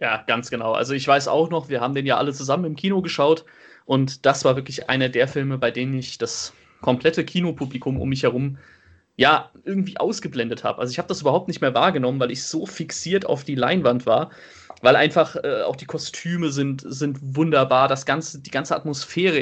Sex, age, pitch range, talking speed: male, 30-49, 130-160 Hz, 205 wpm